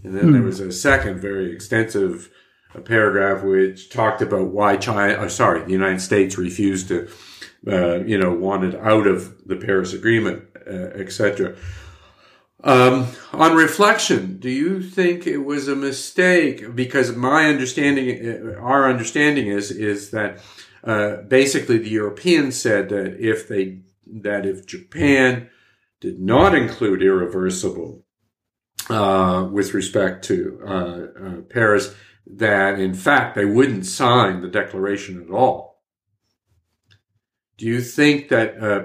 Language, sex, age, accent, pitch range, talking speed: English, male, 50-69, American, 95-115 Hz, 135 wpm